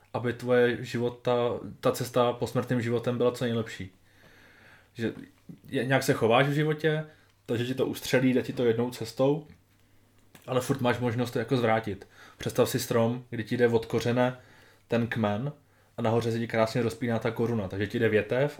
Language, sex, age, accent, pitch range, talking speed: Czech, male, 20-39, native, 110-125 Hz, 175 wpm